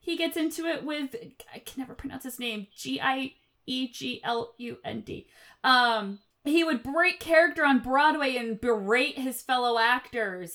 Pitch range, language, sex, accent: 210-275 Hz, English, female, American